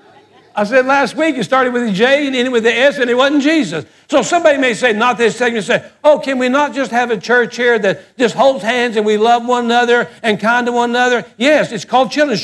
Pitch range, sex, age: 225-285 Hz, male, 60-79